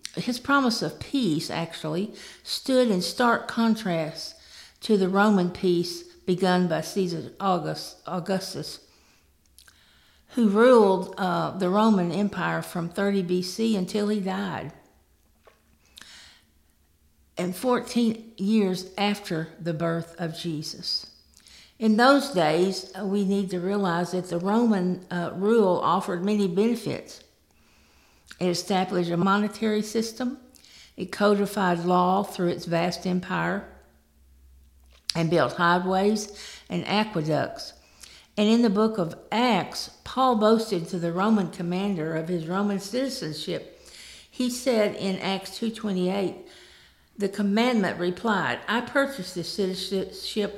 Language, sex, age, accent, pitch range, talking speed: English, female, 60-79, American, 165-210 Hz, 115 wpm